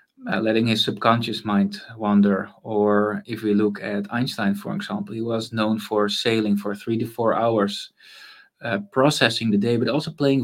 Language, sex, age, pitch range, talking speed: English, male, 20-39, 110-135 Hz, 180 wpm